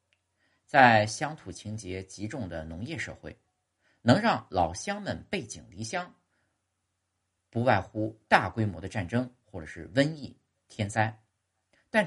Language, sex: Chinese, male